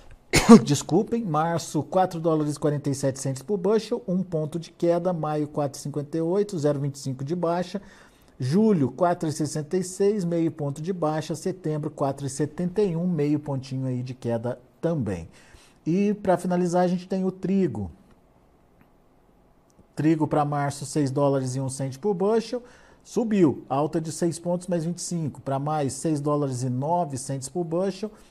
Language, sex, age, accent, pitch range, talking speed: Portuguese, male, 50-69, Brazilian, 140-180 Hz, 130 wpm